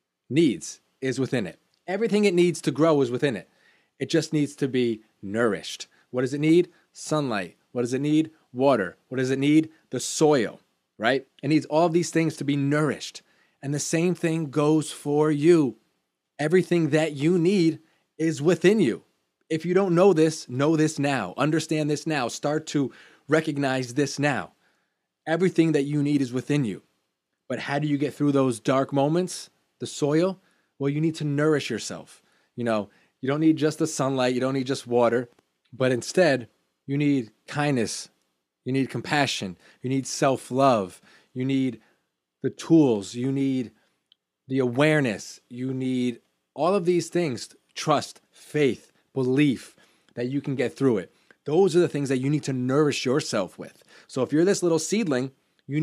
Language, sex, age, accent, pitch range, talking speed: English, male, 20-39, American, 130-160 Hz, 175 wpm